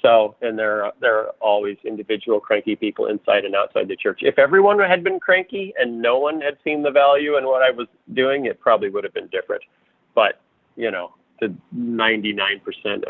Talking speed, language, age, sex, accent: 195 wpm, English, 40-59, male, American